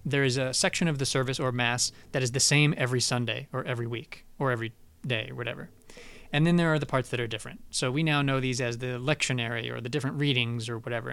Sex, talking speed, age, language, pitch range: male, 250 wpm, 20-39, English, 120-140 Hz